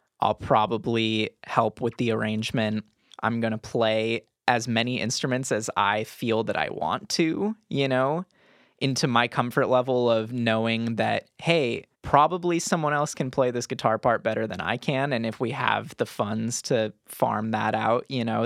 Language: English